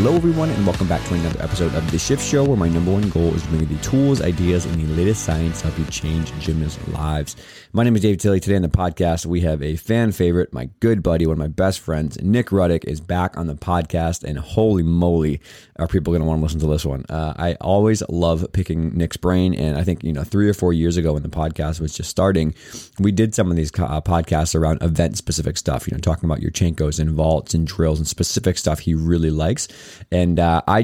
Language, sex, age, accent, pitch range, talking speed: English, male, 30-49, American, 80-95 Hz, 250 wpm